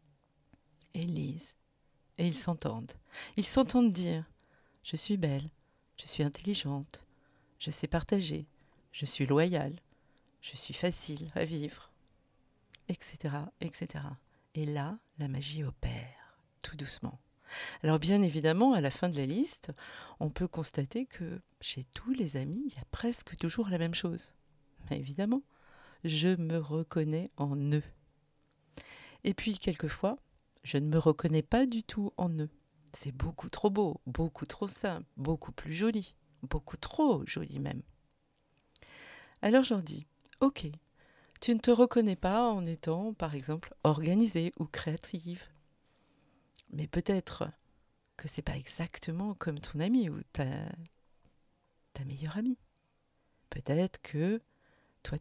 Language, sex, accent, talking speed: French, female, French, 135 wpm